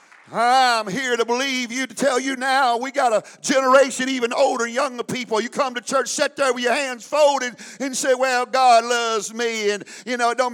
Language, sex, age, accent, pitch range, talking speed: English, male, 50-69, American, 230-290 Hz, 215 wpm